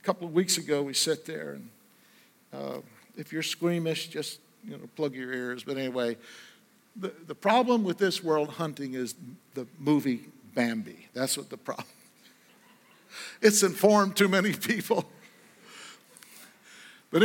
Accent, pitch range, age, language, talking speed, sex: American, 150-190 Hz, 60-79, English, 145 wpm, male